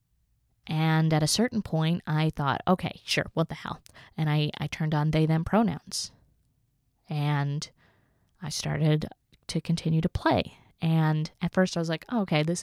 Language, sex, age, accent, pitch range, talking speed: English, female, 20-39, American, 150-185 Hz, 170 wpm